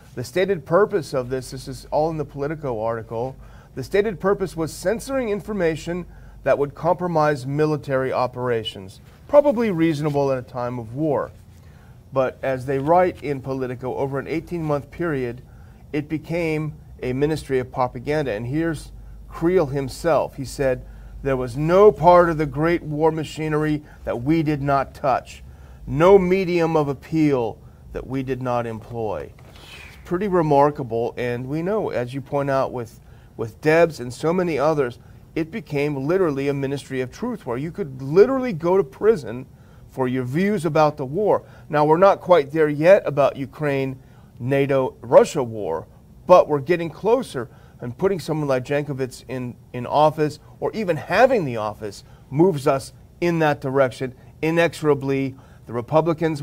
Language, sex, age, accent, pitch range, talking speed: English, male, 40-59, American, 130-165 Hz, 155 wpm